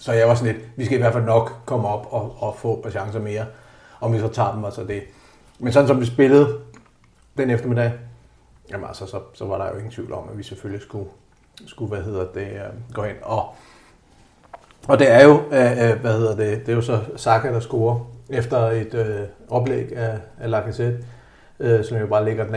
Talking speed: 225 wpm